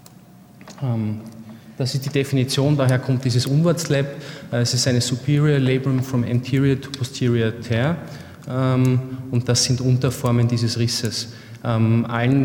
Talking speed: 120 wpm